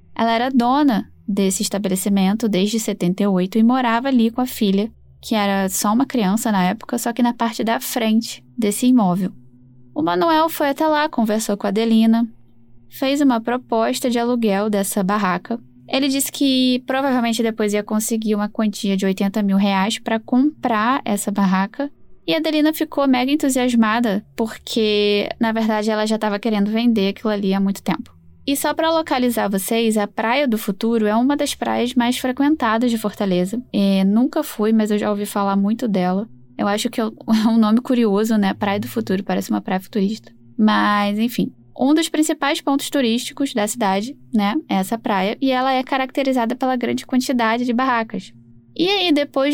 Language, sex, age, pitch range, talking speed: Portuguese, female, 10-29, 205-250 Hz, 175 wpm